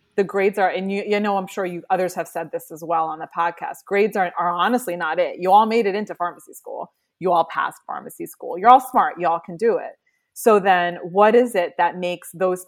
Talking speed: 245 wpm